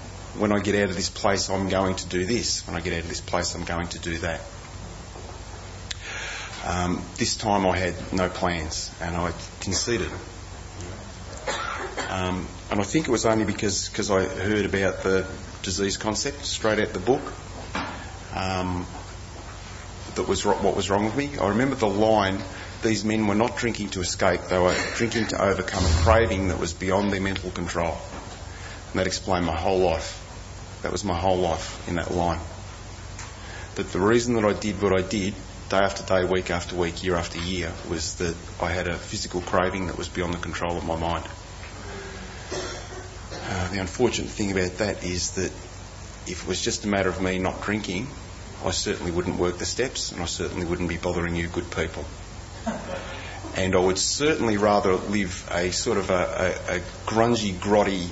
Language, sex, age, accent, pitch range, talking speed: English, male, 30-49, Australian, 90-100 Hz, 185 wpm